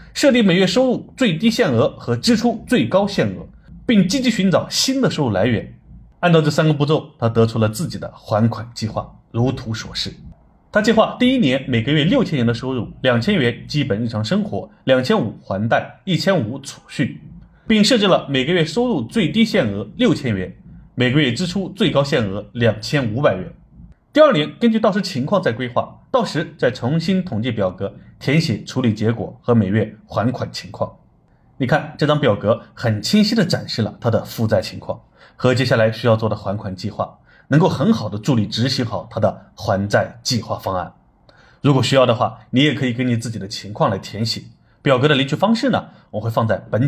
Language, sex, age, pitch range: Chinese, male, 30-49, 115-180 Hz